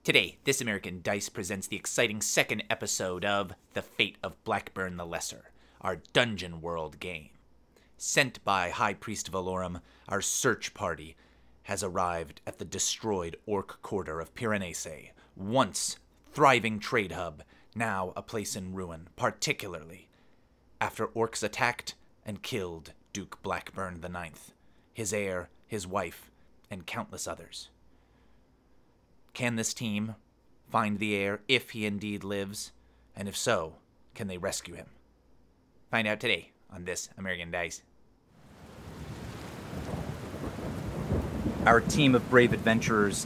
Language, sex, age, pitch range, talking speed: English, male, 30-49, 90-115 Hz, 130 wpm